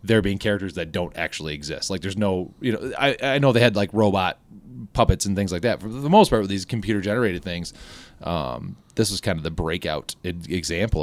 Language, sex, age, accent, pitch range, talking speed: English, male, 30-49, American, 90-120 Hz, 225 wpm